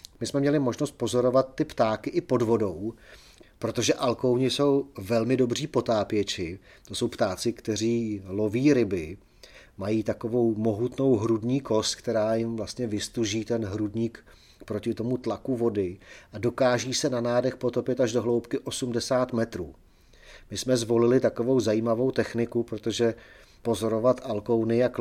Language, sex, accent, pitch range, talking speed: Czech, male, native, 105-125 Hz, 140 wpm